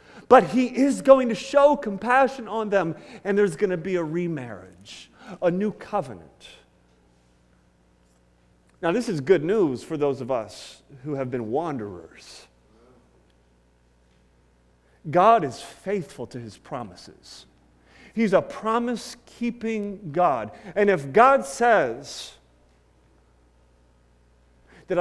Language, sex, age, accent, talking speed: English, male, 40-59, American, 115 wpm